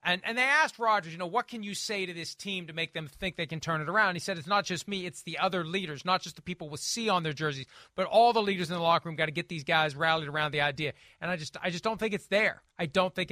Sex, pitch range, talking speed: male, 155-190 Hz, 325 wpm